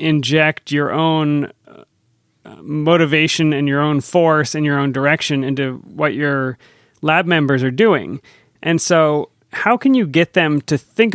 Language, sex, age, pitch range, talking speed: English, male, 30-49, 135-165 Hz, 155 wpm